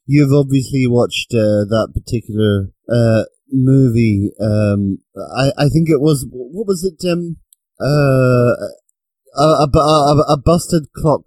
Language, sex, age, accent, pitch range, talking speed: English, male, 30-49, British, 105-145 Hz, 135 wpm